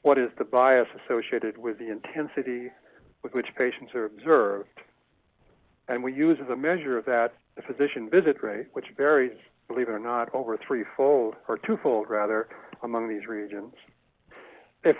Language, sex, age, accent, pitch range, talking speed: English, male, 60-79, American, 125-155 Hz, 160 wpm